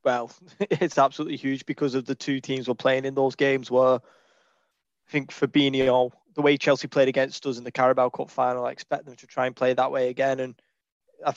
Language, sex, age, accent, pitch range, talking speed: English, male, 20-39, British, 125-140 Hz, 215 wpm